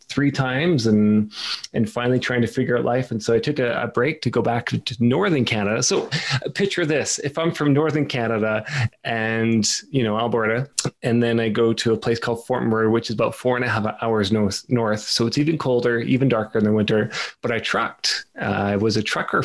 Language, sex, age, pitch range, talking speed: English, male, 20-39, 110-130 Hz, 220 wpm